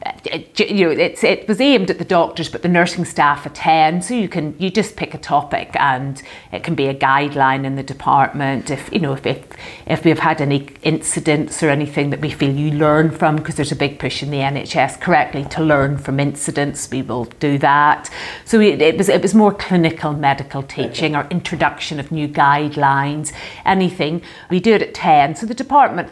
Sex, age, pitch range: female, 50-69, 140-180 Hz